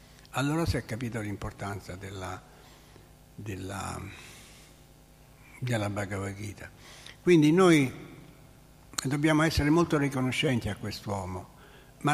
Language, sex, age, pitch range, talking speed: Italian, male, 60-79, 110-140 Hz, 95 wpm